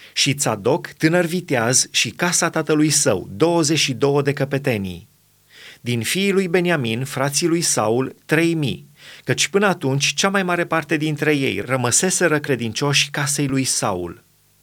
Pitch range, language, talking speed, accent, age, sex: 125-160 Hz, Romanian, 135 wpm, native, 30-49, male